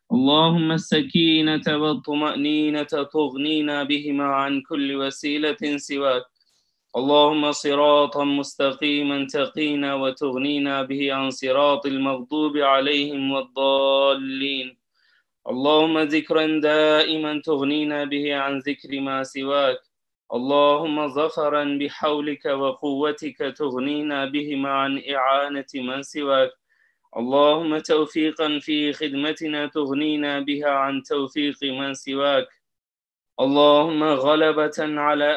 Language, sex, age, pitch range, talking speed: Turkish, male, 20-39, 140-150 Hz, 90 wpm